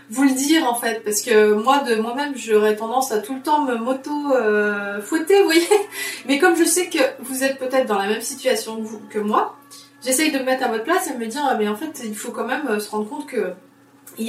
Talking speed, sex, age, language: 260 wpm, female, 20-39, French